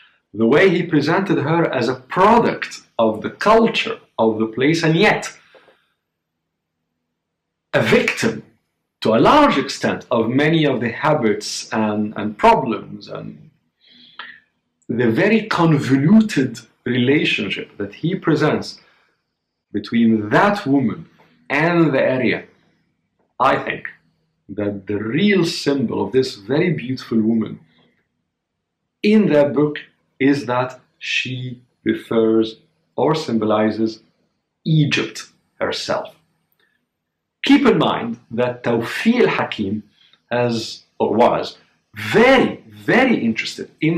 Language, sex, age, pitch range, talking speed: Arabic, male, 50-69, 110-165 Hz, 105 wpm